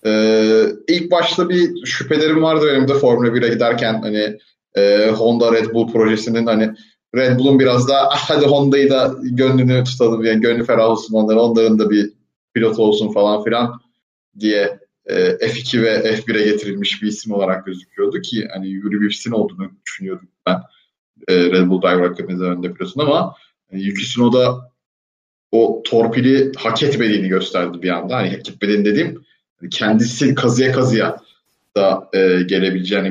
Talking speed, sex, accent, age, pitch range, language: 150 wpm, male, native, 30-49, 105-130 Hz, Turkish